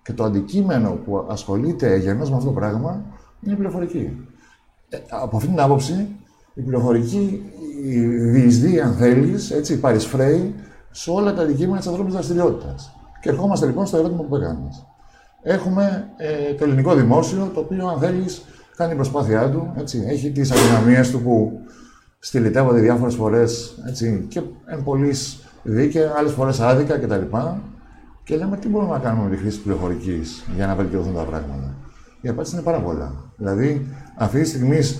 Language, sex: Greek, male